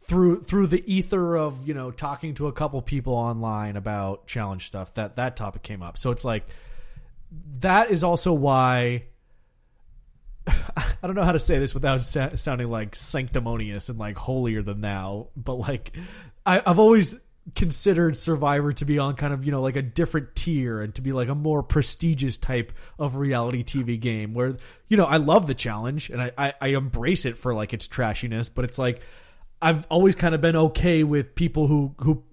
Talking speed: 195 wpm